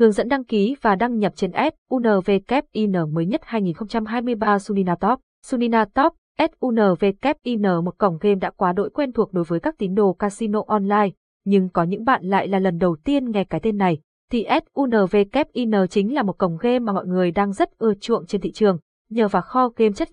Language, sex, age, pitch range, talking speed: Vietnamese, female, 20-39, 190-235 Hz, 200 wpm